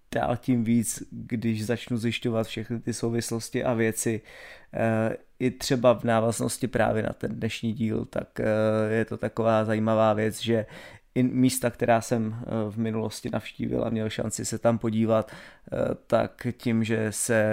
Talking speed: 145 wpm